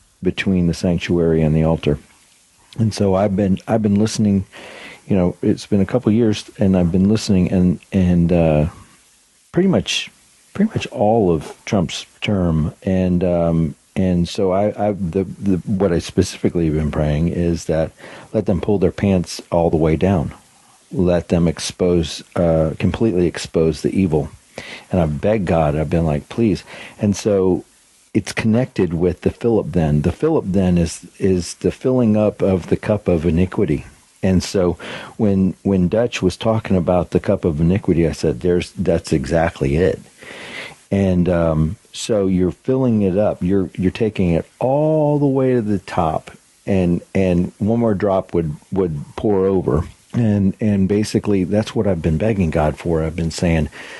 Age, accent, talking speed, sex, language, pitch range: 40-59, American, 170 wpm, male, English, 85-105 Hz